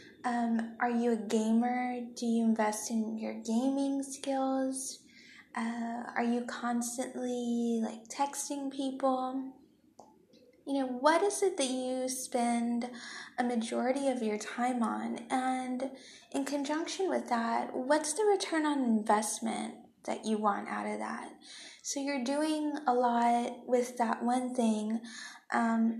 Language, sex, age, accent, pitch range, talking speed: English, female, 10-29, American, 225-270 Hz, 135 wpm